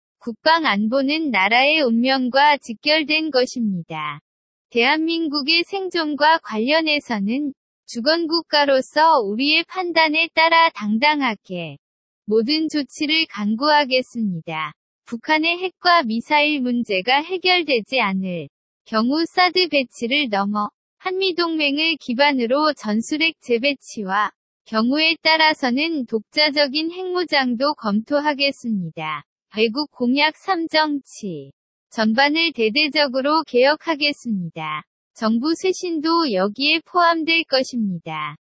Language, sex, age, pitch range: Korean, female, 20-39, 225-315 Hz